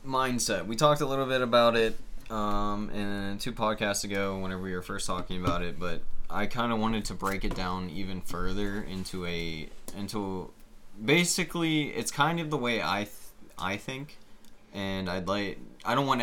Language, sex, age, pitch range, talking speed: English, male, 20-39, 90-110 Hz, 180 wpm